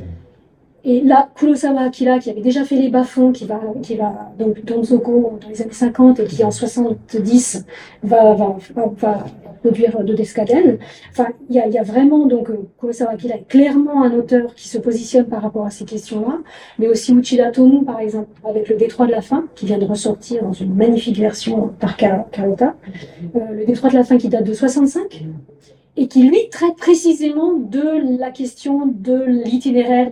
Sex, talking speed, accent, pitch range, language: female, 190 wpm, French, 220-265 Hz, French